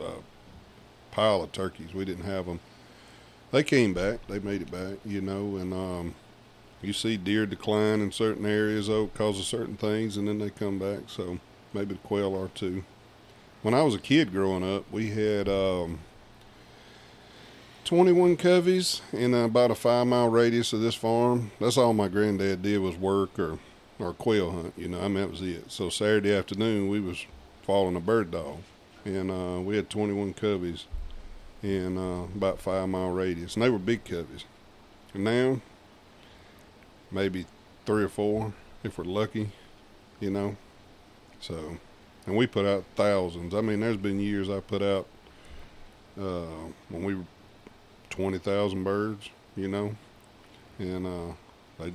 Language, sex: English, male